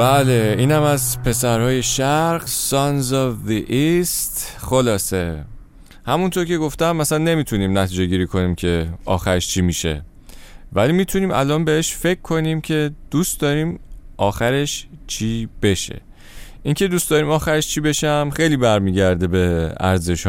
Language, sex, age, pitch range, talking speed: Persian, male, 30-49, 95-150 Hz, 135 wpm